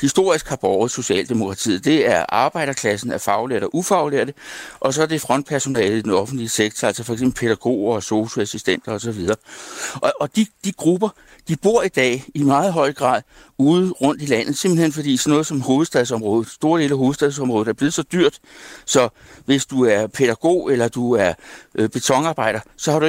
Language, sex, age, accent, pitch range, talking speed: Danish, male, 60-79, native, 120-155 Hz, 175 wpm